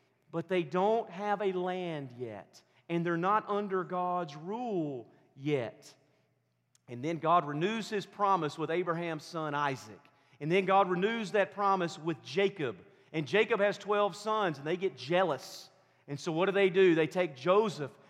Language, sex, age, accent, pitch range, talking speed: English, male, 40-59, American, 160-220 Hz, 165 wpm